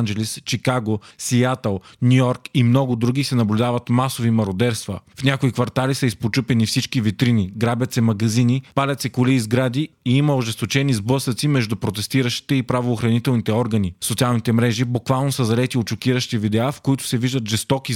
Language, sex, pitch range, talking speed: Bulgarian, male, 115-135 Hz, 160 wpm